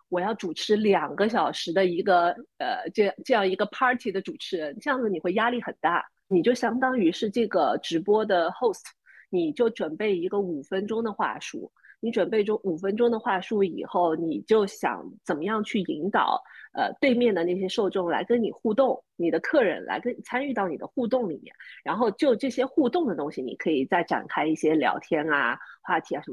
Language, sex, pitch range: Chinese, female, 180-250 Hz